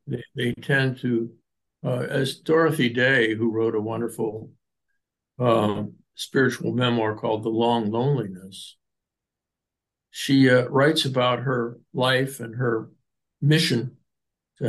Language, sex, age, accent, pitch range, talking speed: English, male, 60-79, American, 115-145 Hz, 115 wpm